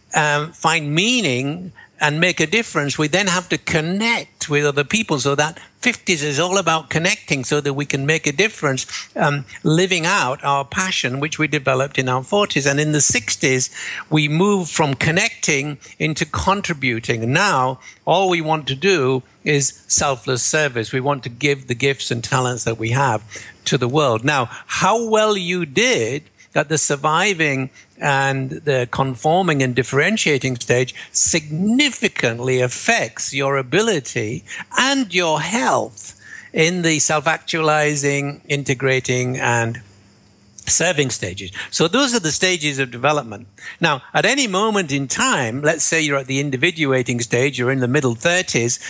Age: 60-79